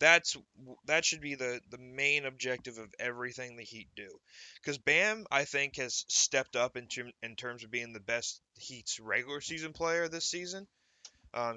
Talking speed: 180 wpm